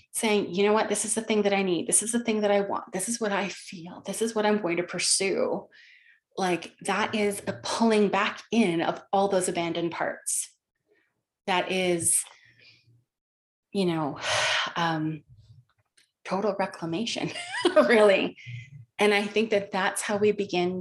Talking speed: 165 wpm